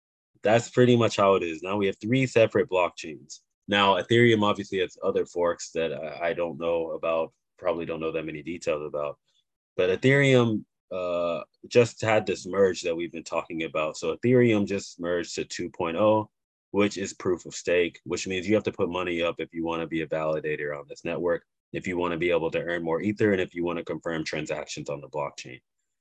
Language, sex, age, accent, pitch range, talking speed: English, male, 20-39, American, 85-100 Hz, 210 wpm